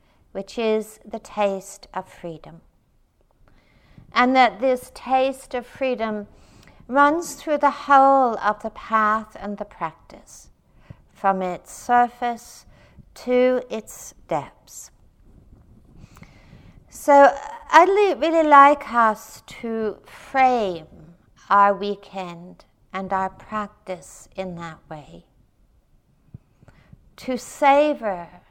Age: 60-79